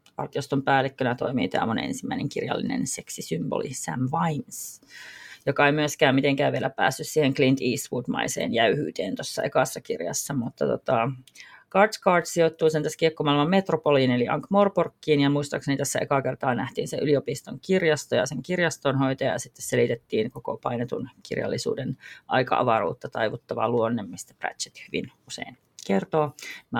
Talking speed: 130 wpm